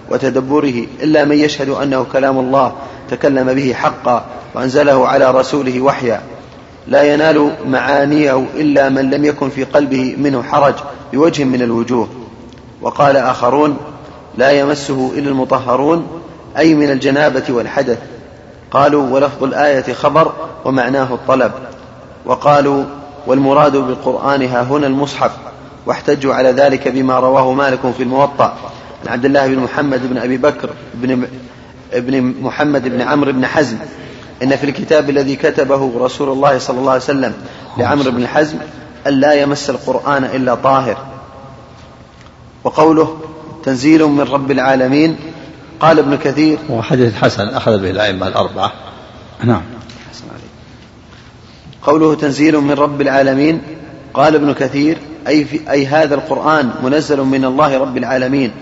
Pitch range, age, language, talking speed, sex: 130-145 Hz, 30-49, Arabic, 125 wpm, male